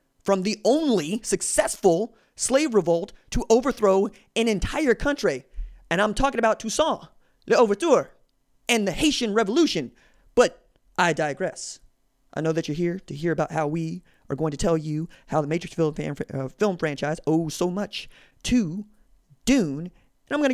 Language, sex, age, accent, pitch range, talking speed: English, male, 20-39, American, 145-220 Hz, 165 wpm